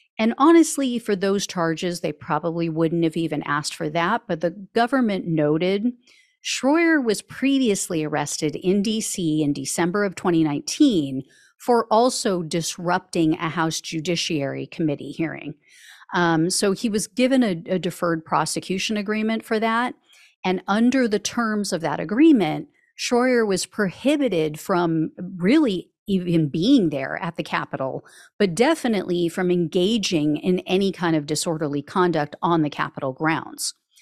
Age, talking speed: 40-59, 140 wpm